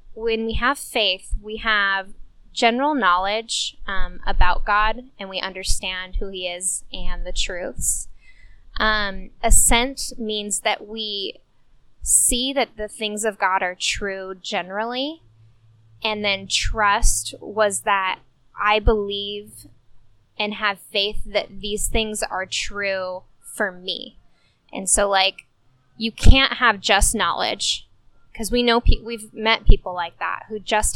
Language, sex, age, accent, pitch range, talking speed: English, female, 10-29, American, 185-220 Hz, 135 wpm